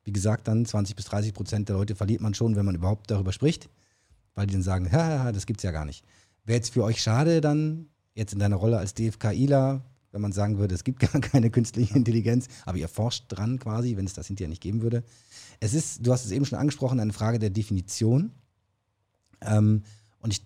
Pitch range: 100-125 Hz